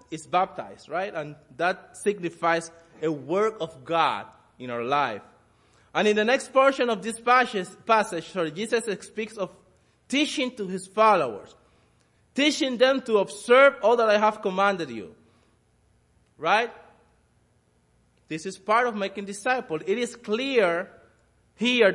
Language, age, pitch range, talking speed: English, 20-39, 175-235 Hz, 140 wpm